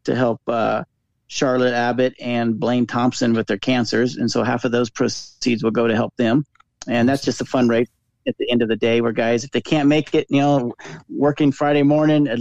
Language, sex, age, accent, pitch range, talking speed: English, male, 30-49, American, 115-135 Hz, 225 wpm